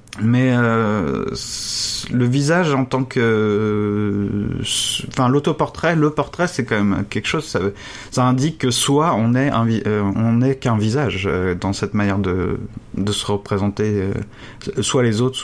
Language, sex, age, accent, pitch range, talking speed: French, male, 30-49, French, 105-130 Hz, 150 wpm